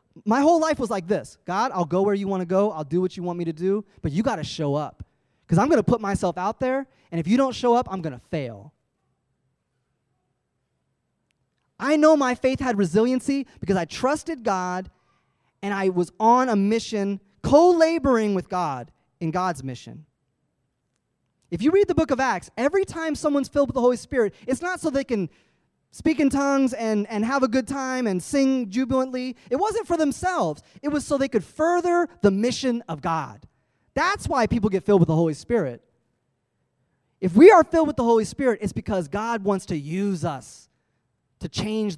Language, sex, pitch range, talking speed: English, male, 155-260 Hz, 200 wpm